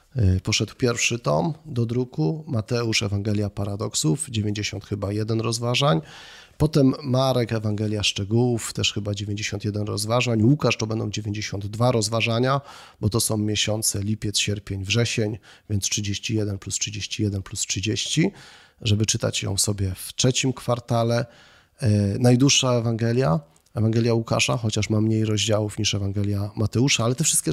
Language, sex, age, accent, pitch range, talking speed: Polish, male, 30-49, native, 100-120 Hz, 125 wpm